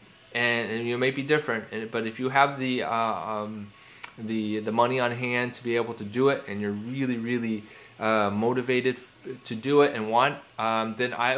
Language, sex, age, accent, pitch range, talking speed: English, male, 20-39, American, 110-140 Hz, 200 wpm